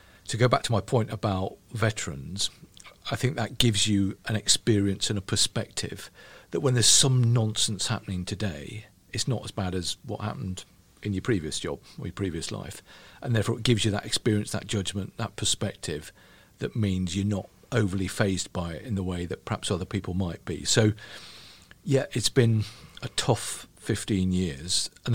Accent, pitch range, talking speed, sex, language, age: British, 95-115 Hz, 185 wpm, male, English, 50-69